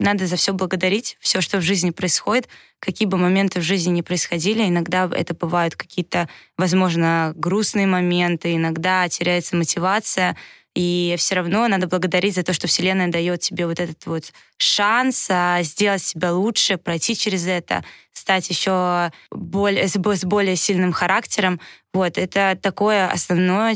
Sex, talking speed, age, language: female, 145 wpm, 20-39, Russian